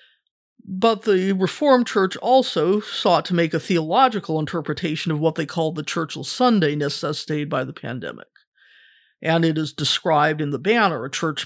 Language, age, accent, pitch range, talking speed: English, 50-69, American, 160-205 Hz, 160 wpm